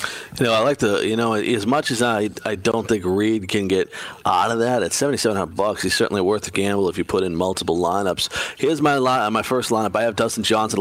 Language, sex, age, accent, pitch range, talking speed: English, male, 40-59, American, 100-120 Hz, 245 wpm